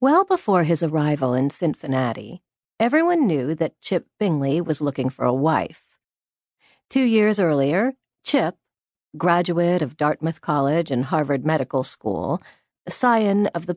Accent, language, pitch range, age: American, English, 150-210 Hz, 40-59